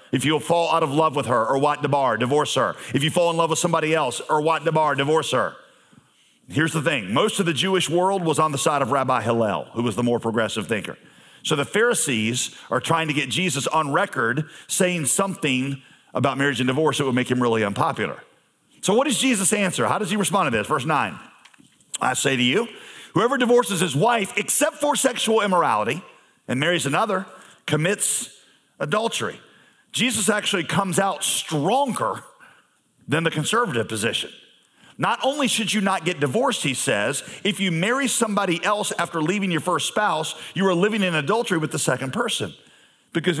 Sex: male